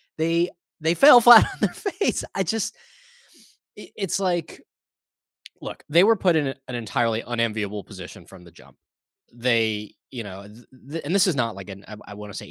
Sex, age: male, 20-39